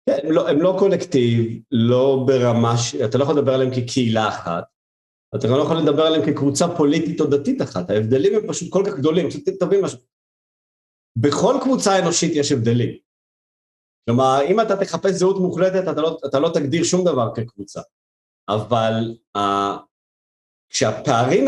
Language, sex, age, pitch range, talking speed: Hebrew, male, 50-69, 115-155 Hz, 155 wpm